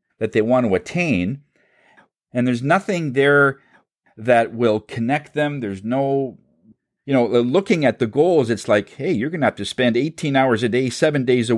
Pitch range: 120-185 Hz